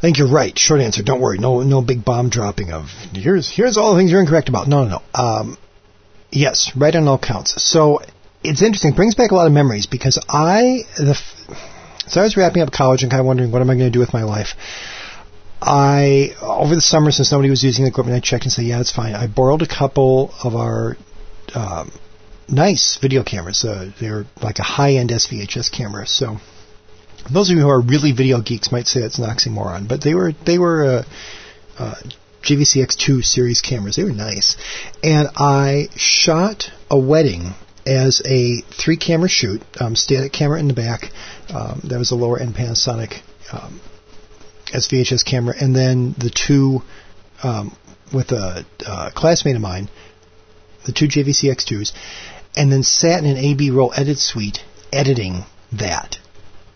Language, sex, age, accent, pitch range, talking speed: English, male, 40-59, American, 105-145 Hz, 185 wpm